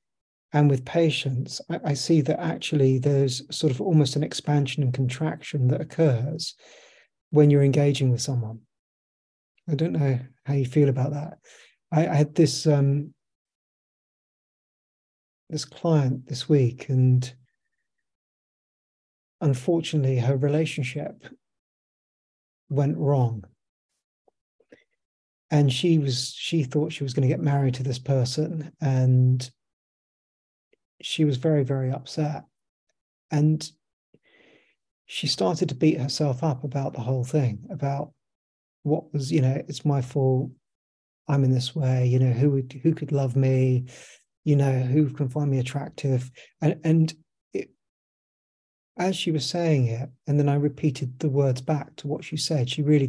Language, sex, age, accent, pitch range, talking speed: English, male, 40-59, British, 130-155 Hz, 140 wpm